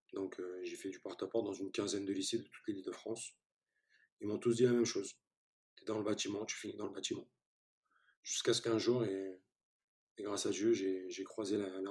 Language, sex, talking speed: French, male, 240 wpm